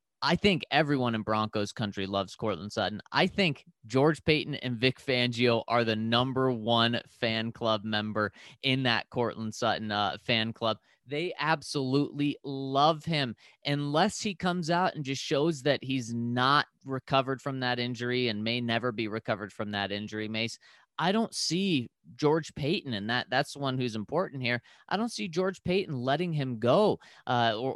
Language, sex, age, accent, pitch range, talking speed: English, male, 20-39, American, 115-150 Hz, 175 wpm